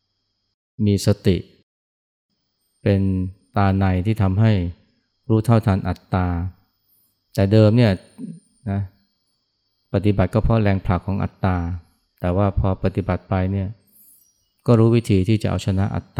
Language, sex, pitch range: Thai, male, 95-110 Hz